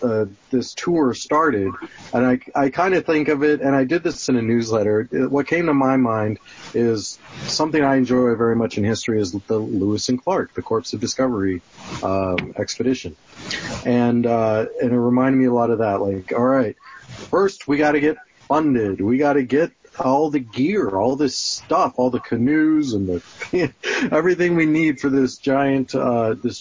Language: English